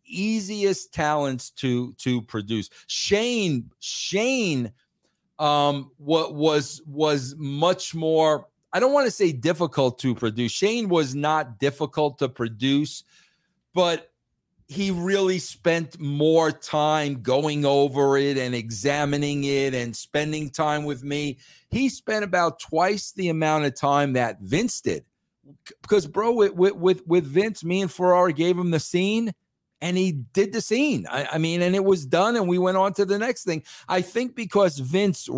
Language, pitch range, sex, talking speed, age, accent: English, 135-185 Hz, male, 155 wpm, 40-59, American